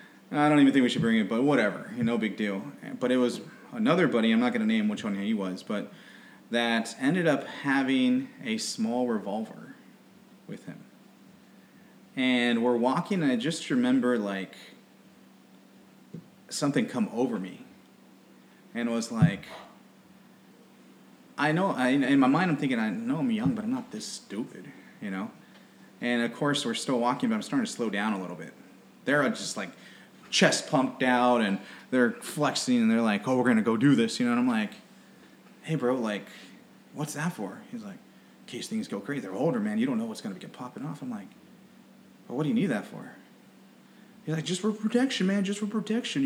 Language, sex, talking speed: English, male, 195 wpm